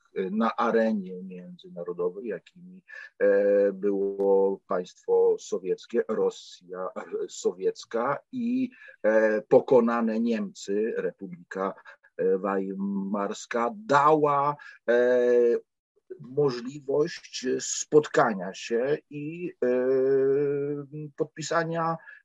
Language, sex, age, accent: Polish, male, 50-69, native